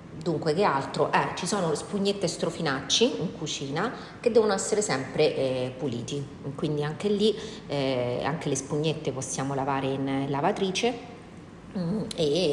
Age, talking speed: 40-59, 140 wpm